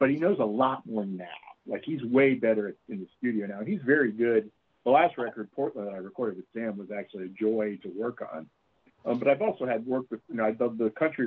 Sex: male